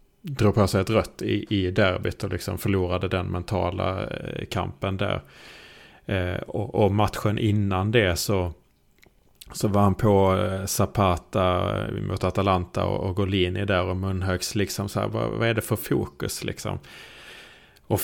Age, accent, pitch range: 30-49, Norwegian, 95-110 Hz